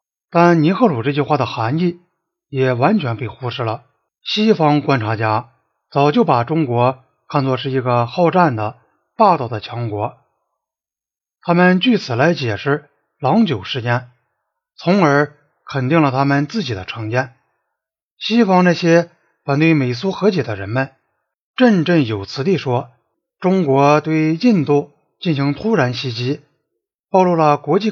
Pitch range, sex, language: 125-175 Hz, male, Chinese